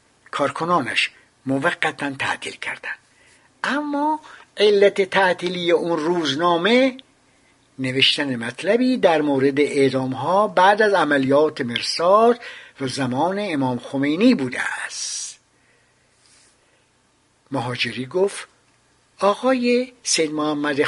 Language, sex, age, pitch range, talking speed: English, male, 60-79, 140-210 Hz, 85 wpm